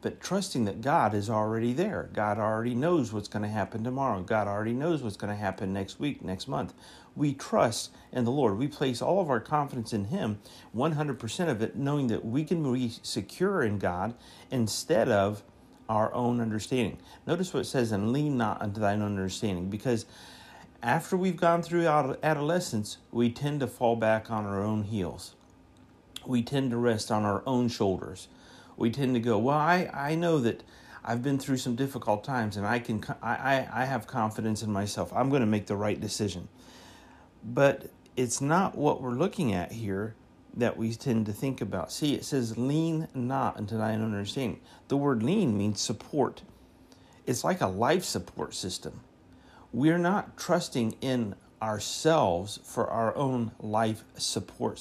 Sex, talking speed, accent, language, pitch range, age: male, 180 wpm, American, English, 105-135 Hz, 50-69